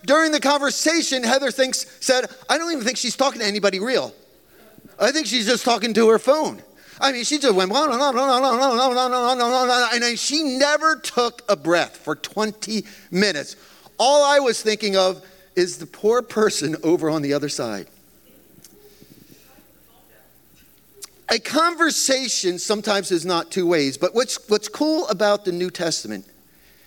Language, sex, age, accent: English, male, 40-59, American